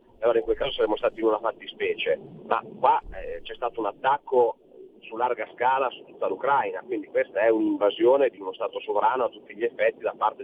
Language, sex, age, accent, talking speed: Italian, male, 40-59, native, 205 wpm